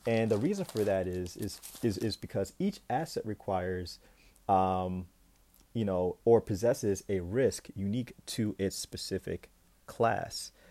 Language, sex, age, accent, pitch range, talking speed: English, male, 30-49, American, 95-115 Hz, 140 wpm